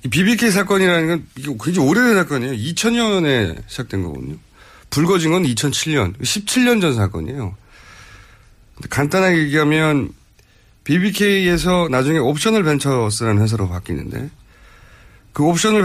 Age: 40-59